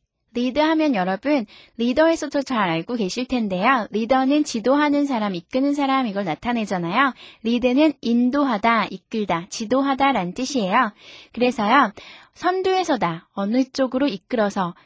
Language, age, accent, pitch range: Korean, 20-39, native, 205-280 Hz